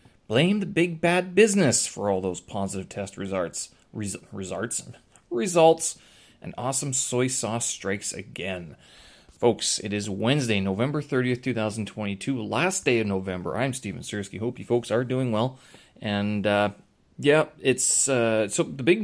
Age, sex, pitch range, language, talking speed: 30-49, male, 100-135 Hz, English, 150 wpm